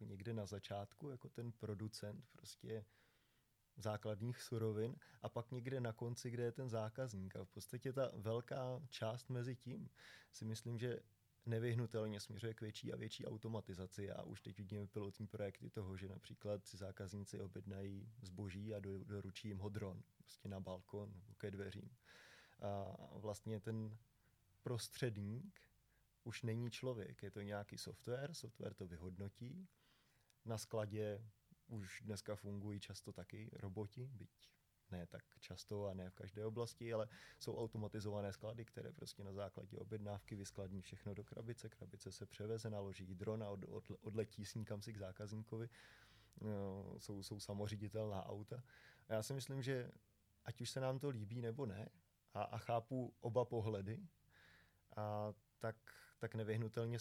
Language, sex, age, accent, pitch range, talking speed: Czech, male, 20-39, native, 100-115 Hz, 150 wpm